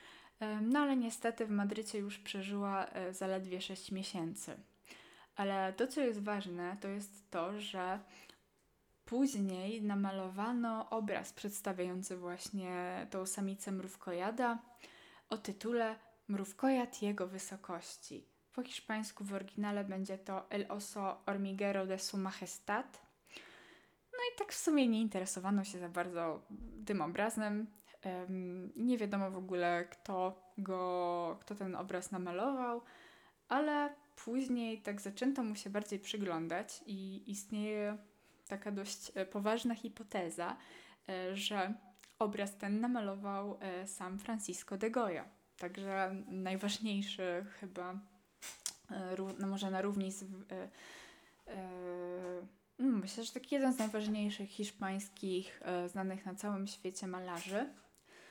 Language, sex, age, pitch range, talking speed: Polish, female, 20-39, 185-220 Hz, 110 wpm